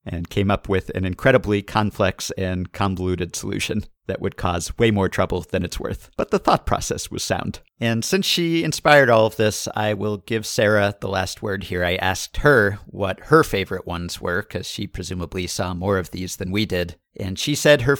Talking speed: 205 wpm